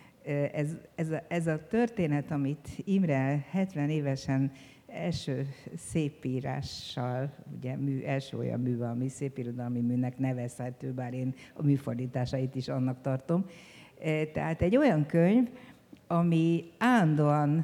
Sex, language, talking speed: female, Hungarian, 115 wpm